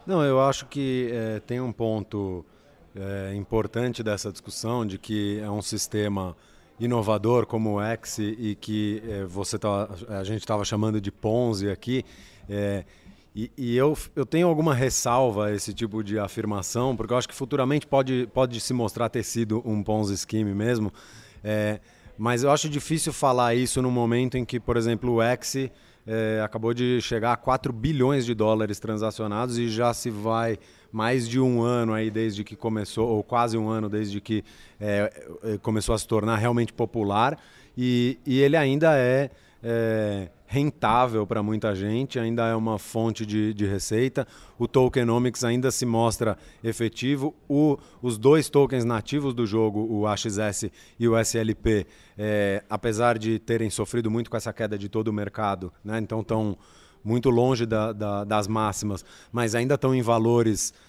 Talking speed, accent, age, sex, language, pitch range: 170 wpm, Brazilian, 30-49, male, Portuguese, 105-125 Hz